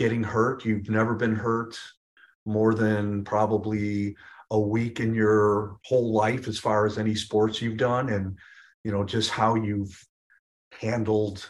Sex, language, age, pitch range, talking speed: male, English, 40-59, 100-110 Hz, 150 wpm